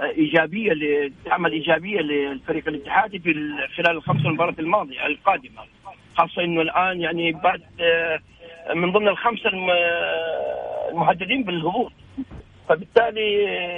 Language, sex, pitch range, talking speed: English, male, 160-255 Hz, 90 wpm